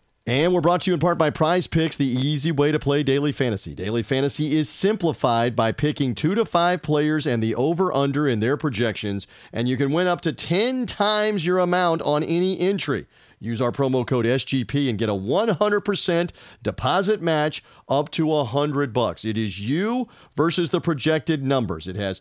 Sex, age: male, 40-59